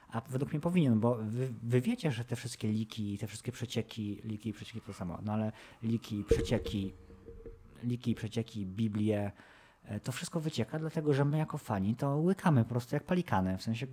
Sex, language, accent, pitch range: male, Polish, native, 105-130 Hz